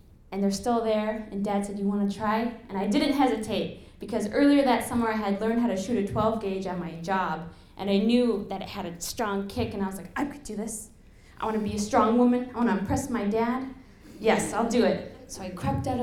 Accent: American